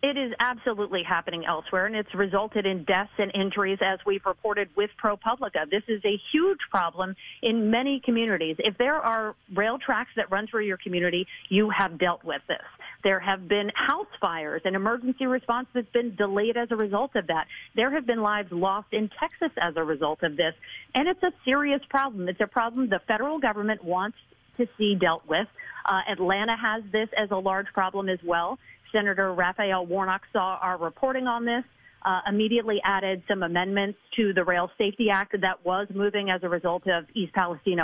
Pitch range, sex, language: 185-230 Hz, female, English